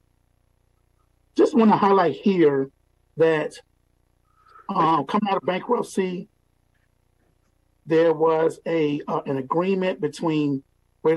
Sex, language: male, English